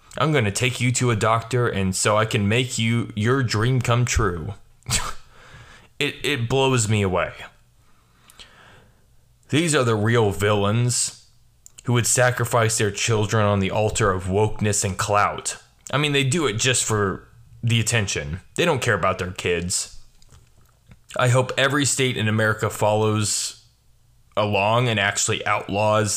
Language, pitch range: English, 100-120 Hz